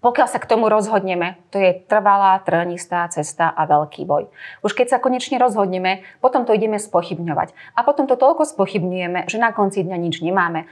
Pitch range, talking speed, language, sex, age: 175-220 Hz, 185 wpm, Slovak, female, 30-49